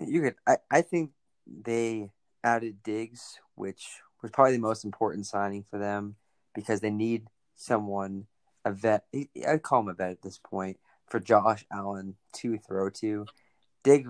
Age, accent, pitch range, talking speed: 30-49, American, 100-115 Hz, 160 wpm